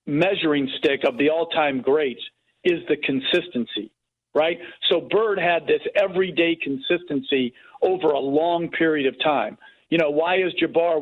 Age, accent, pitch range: 50-69, American, 155-210 Hz